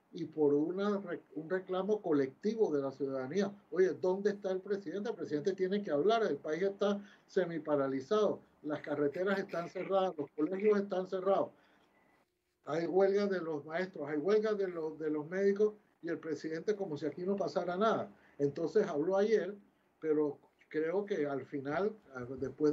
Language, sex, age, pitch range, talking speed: Spanish, male, 60-79, 145-195 Hz, 165 wpm